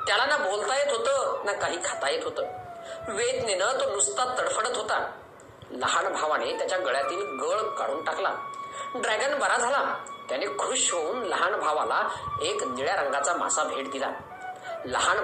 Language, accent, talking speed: Marathi, native, 80 wpm